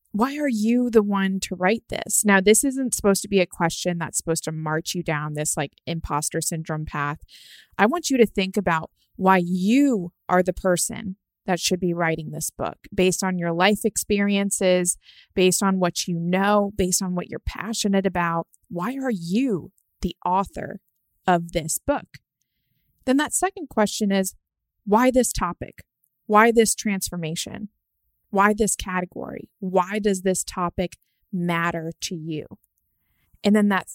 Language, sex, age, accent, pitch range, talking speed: English, female, 20-39, American, 175-210 Hz, 165 wpm